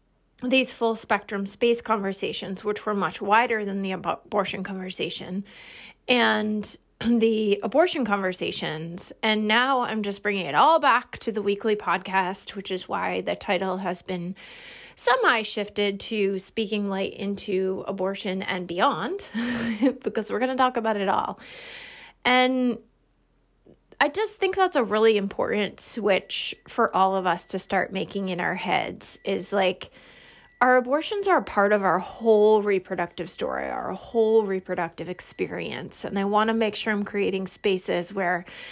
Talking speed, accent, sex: 150 wpm, American, female